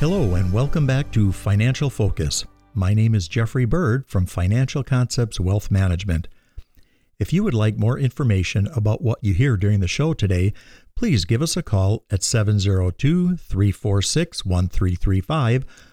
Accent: American